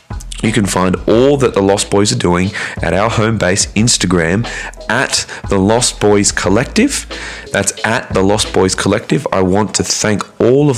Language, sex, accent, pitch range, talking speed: English, male, Australian, 90-110 Hz, 180 wpm